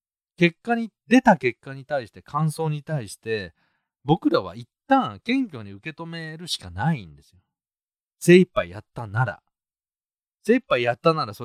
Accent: native